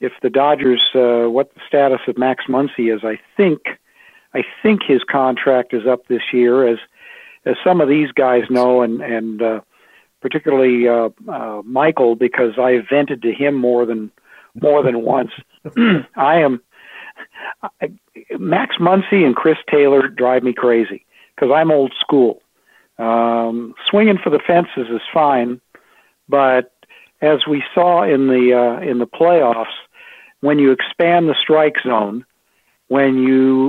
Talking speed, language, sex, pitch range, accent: 155 wpm, English, male, 120-150 Hz, American